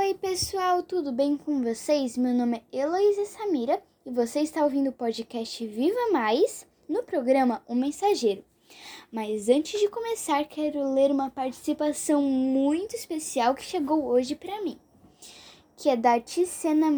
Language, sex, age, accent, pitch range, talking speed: Portuguese, female, 10-29, Brazilian, 255-350 Hz, 150 wpm